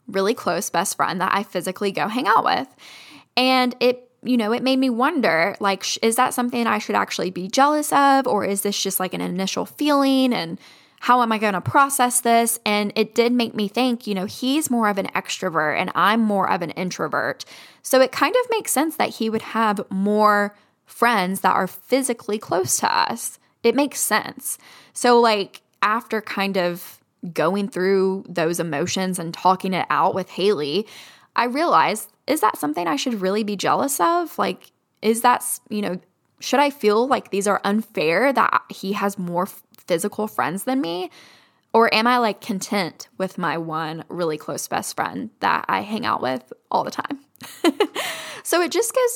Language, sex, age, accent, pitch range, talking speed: English, female, 10-29, American, 185-245 Hz, 190 wpm